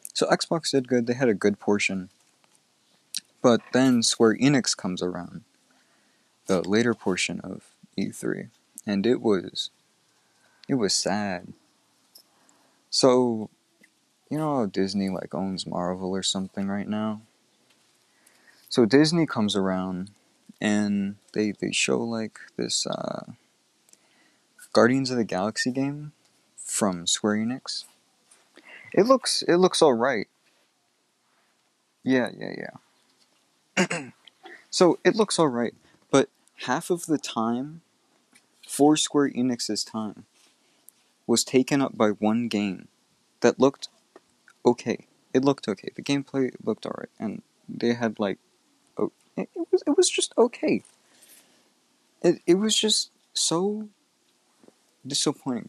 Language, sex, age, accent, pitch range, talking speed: English, male, 20-39, American, 105-150 Hz, 120 wpm